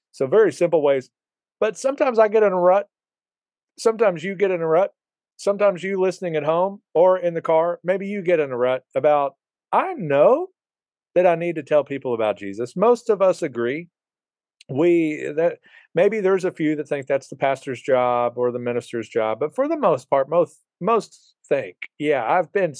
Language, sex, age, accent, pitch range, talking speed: English, male, 40-59, American, 140-195 Hz, 195 wpm